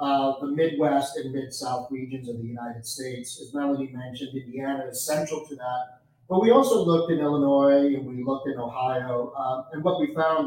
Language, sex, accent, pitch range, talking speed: English, male, American, 130-145 Hz, 195 wpm